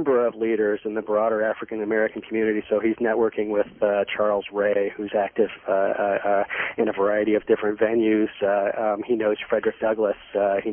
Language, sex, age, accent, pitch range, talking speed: English, male, 40-59, American, 110-130 Hz, 185 wpm